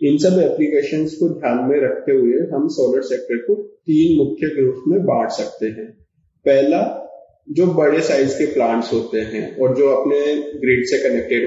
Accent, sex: native, male